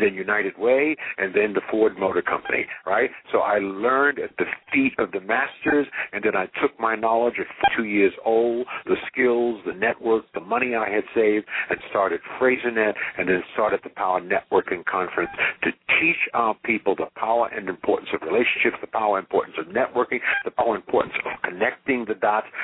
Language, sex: English, male